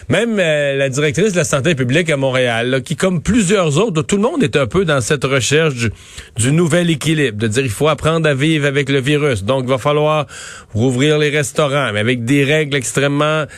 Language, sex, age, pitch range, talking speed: French, male, 40-59, 125-165 Hz, 225 wpm